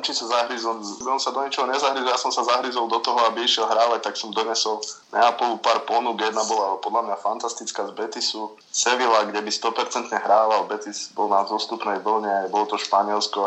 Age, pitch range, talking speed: 20-39, 100-115 Hz, 180 wpm